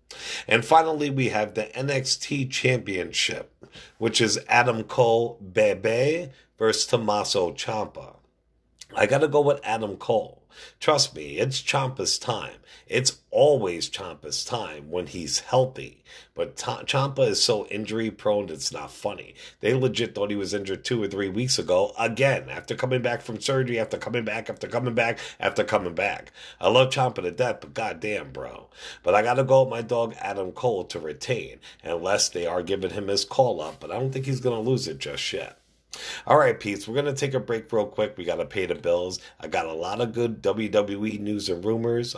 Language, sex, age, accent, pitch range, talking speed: English, male, 50-69, American, 105-135 Hz, 190 wpm